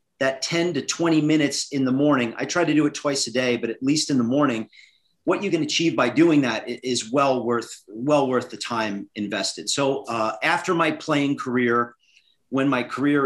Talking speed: 210 wpm